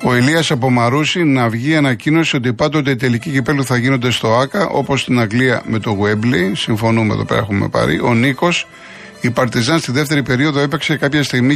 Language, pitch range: Greek, 115-145 Hz